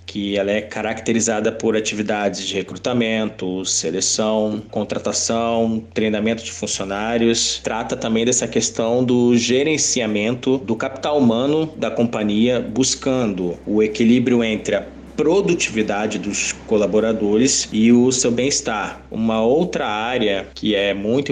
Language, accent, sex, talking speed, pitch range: Portuguese, Brazilian, male, 120 wpm, 110-125 Hz